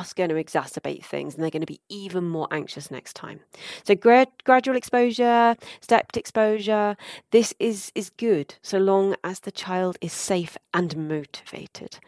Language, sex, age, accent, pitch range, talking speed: English, female, 30-49, British, 155-210 Hz, 160 wpm